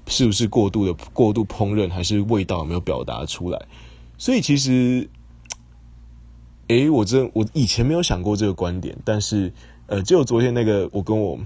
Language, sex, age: Chinese, male, 20-39